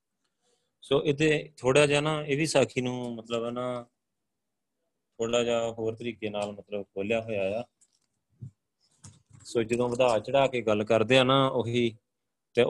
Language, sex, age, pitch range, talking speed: Punjabi, male, 20-39, 100-125 Hz, 140 wpm